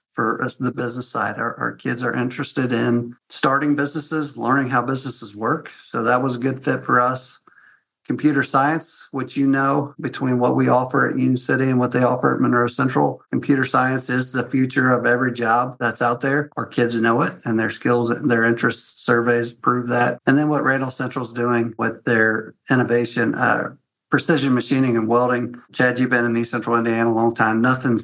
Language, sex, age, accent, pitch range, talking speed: English, male, 50-69, American, 115-130 Hz, 200 wpm